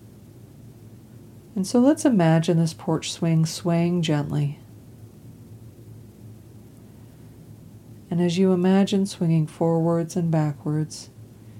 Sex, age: female, 40-59